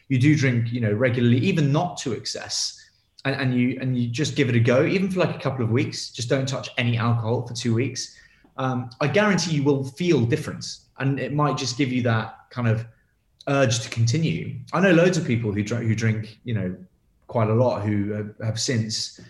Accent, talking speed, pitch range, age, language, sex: British, 225 wpm, 110-135 Hz, 20-39, English, male